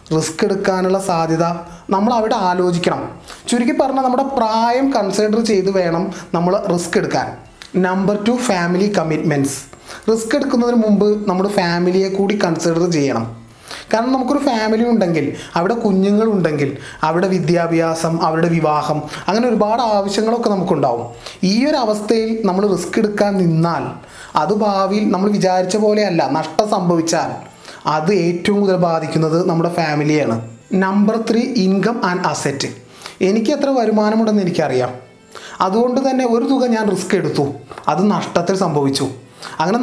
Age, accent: 30-49, native